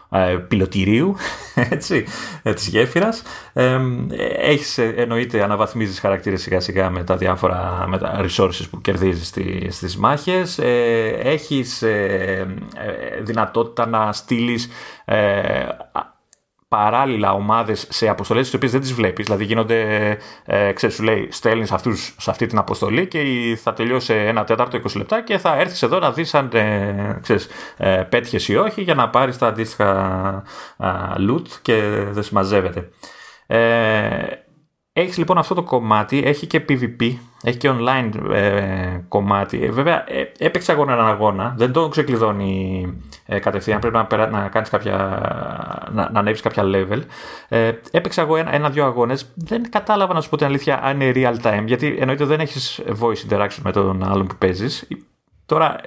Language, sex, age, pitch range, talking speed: Greek, male, 30-49, 100-135 Hz, 135 wpm